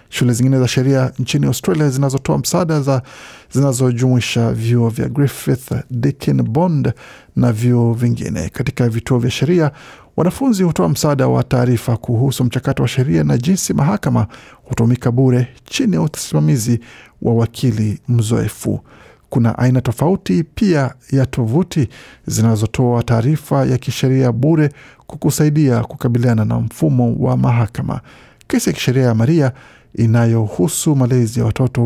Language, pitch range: Swahili, 120-140 Hz